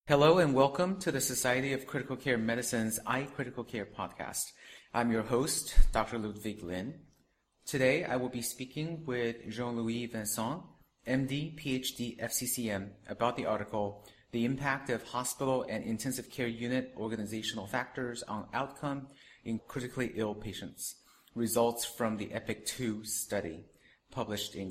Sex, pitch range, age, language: male, 105-125 Hz, 30-49, English